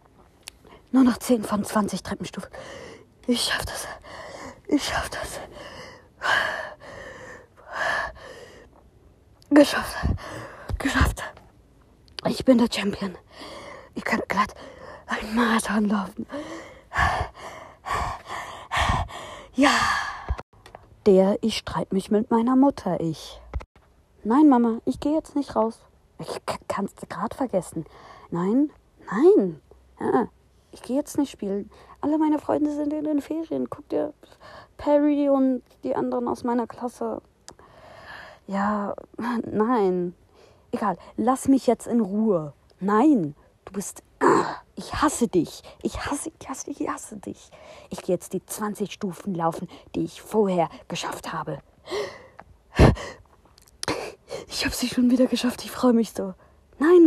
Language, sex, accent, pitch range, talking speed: German, female, German, 200-290 Hz, 120 wpm